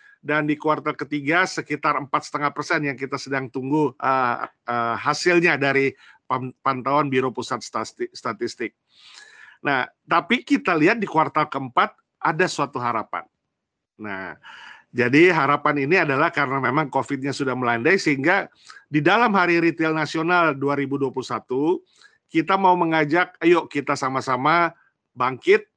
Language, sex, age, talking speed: Indonesian, male, 50-69, 125 wpm